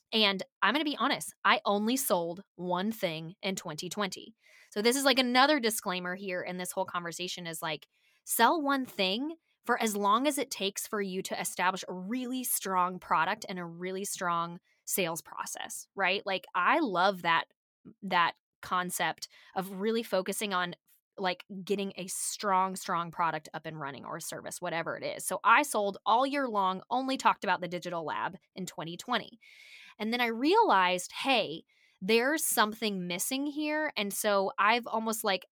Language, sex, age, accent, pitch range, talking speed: English, female, 20-39, American, 180-225 Hz, 170 wpm